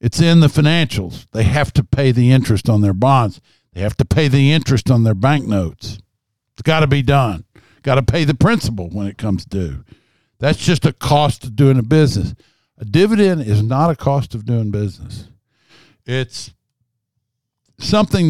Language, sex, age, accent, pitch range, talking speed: English, male, 60-79, American, 110-145 Hz, 185 wpm